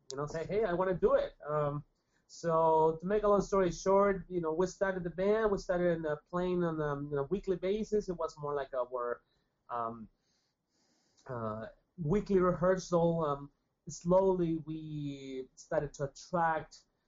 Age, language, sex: 30-49, English, male